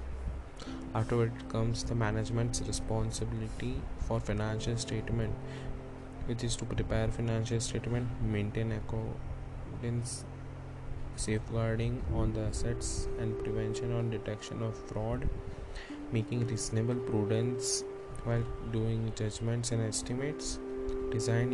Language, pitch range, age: Hindi, 105-125 Hz, 20-39